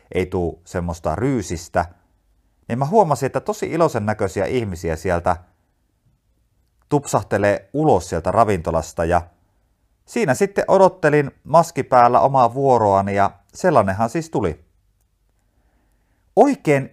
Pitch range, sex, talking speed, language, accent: 90-140 Hz, male, 105 wpm, Finnish, native